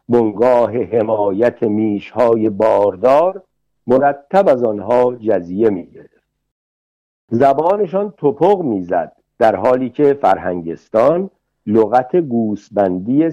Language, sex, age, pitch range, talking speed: Persian, male, 60-79, 105-140 Hz, 80 wpm